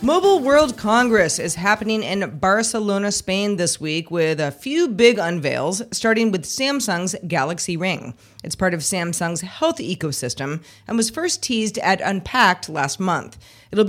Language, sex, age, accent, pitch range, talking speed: English, female, 30-49, American, 165-225 Hz, 150 wpm